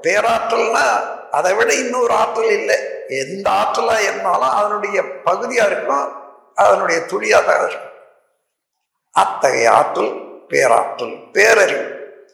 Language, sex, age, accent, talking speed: Tamil, male, 60-79, native, 90 wpm